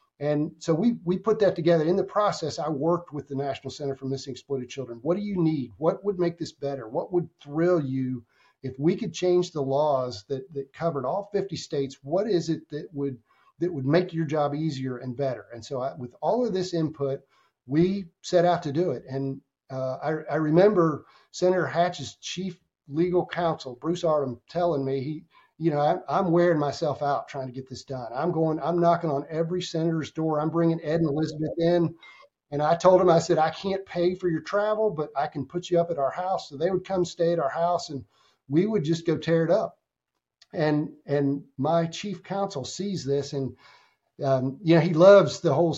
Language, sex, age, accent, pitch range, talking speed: English, male, 50-69, American, 140-175 Hz, 215 wpm